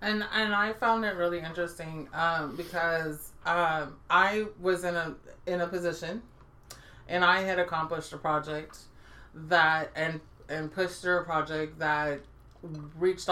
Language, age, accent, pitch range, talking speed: English, 30-49, American, 160-195 Hz, 145 wpm